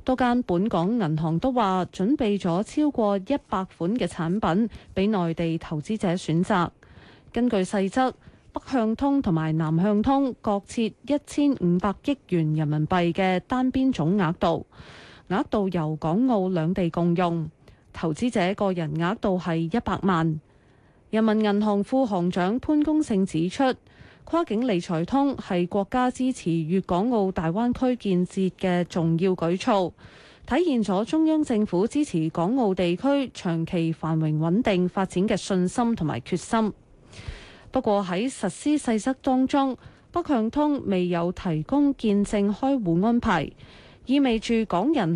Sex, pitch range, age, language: female, 175-240 Hz, 20-39, Chinese